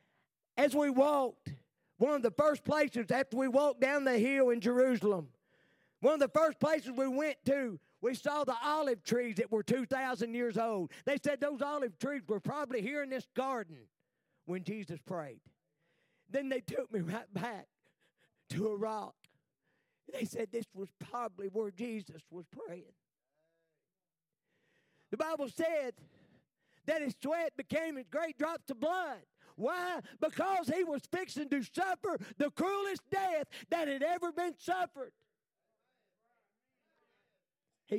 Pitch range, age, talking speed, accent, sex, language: 175-275 Hz, 50-69, 150 wpm, American, male, English